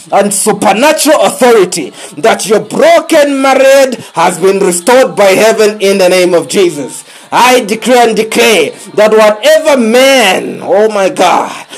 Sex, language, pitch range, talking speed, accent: male, English, 190-255 Hz, 140 wpm, South African